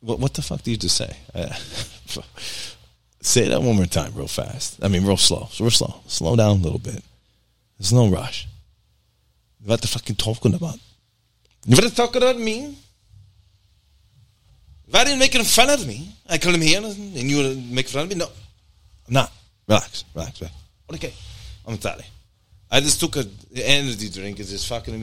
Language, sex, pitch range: English, male, 90-120 Hz